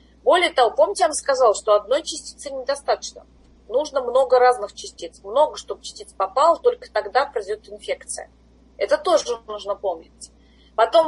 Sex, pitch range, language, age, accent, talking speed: female, 230-355 Hz, Russian, 20-39, native, 145 wpm